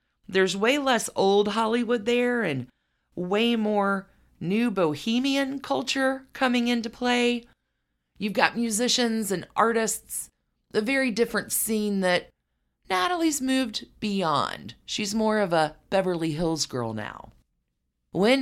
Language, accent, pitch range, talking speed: English, American, 140-220 Hz, 120 wpm